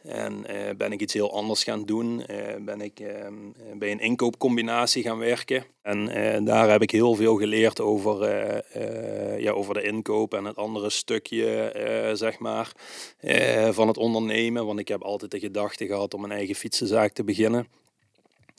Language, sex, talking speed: Dutch, male, 185 wpm